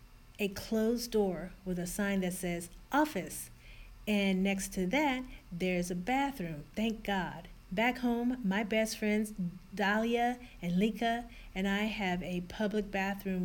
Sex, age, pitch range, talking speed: female, 40-59, 180-215 Hz, 145 wpm